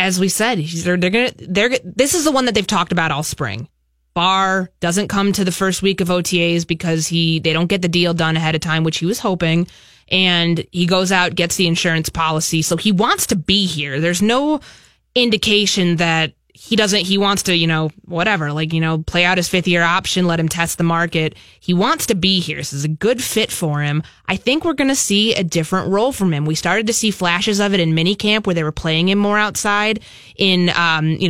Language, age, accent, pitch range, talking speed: English, 20-39, American, 165-220 Hz, 230 wpm